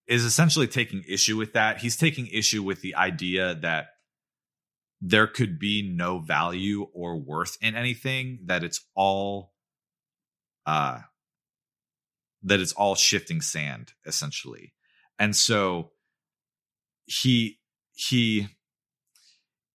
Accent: American